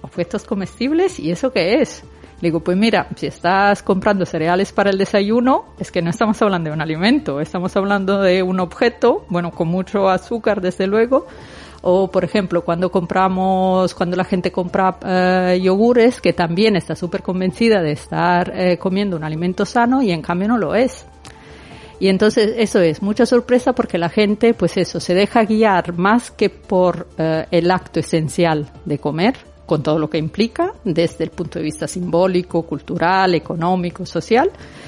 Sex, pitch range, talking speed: female, 170-215 Hz, 175 wpm